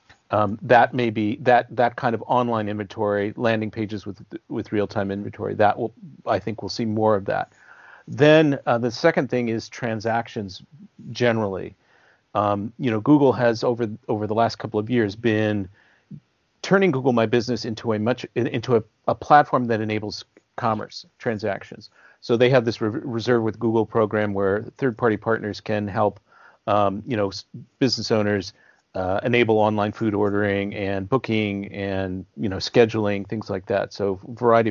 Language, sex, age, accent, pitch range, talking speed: English, male, 40-59, American, 105-120 Hz, 170 wpm